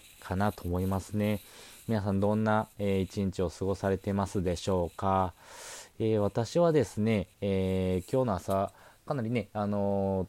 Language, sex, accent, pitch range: Japanese, male, native, 90-110 Hz